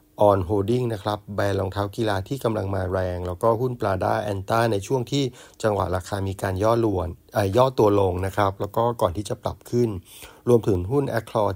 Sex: male